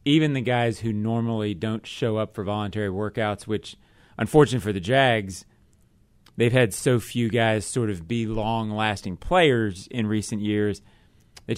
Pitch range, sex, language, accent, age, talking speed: 105-120 Hz, male, English, American, 30-49, 155 wpm